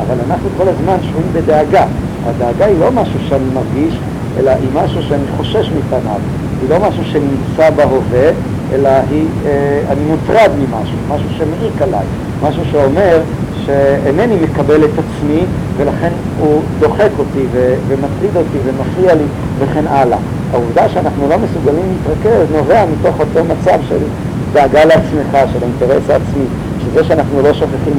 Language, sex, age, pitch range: Hebrew, male, 50-69, 130-155 Hz